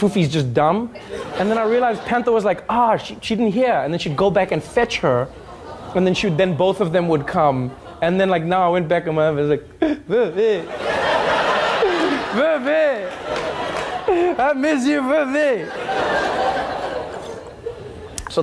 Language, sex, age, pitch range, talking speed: English, male, 20-39, 170-240 Hz, 175 wpm